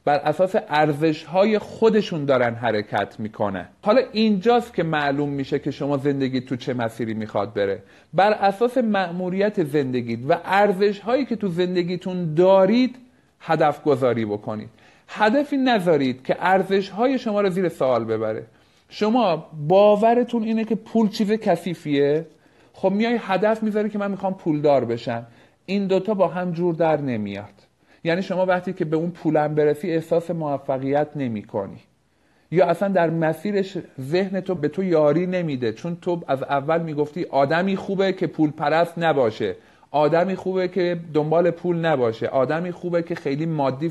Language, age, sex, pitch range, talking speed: Persian, 50-69, male, 140-190 Hz, 155 wpm